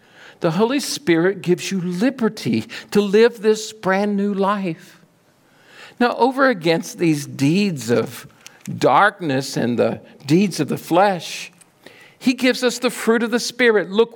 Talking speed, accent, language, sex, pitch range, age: 145 wpm, American, English, male, 150-205 Hz, 50-69